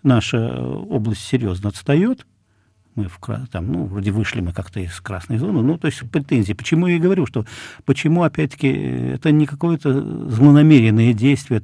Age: 50-69